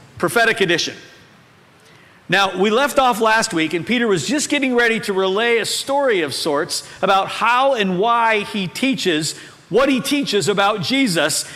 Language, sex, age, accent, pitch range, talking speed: English, male, 50-69, American, 155-230 Hz, 160 wpm